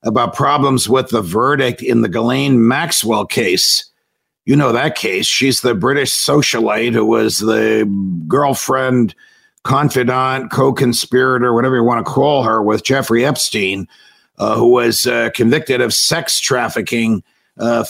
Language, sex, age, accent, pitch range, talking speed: English, male, 50-69, American, 115-140 Hz, 140 wpm